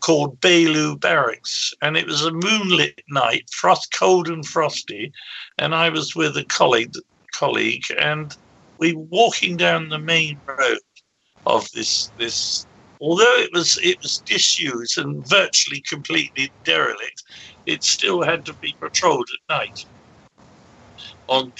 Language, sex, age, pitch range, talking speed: English, male, 60-79, 155-205 Hz, 140 wpm